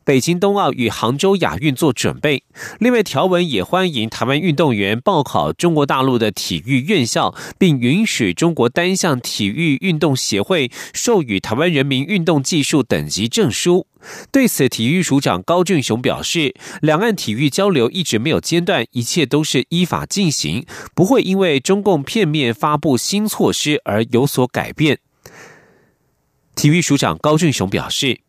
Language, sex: German, male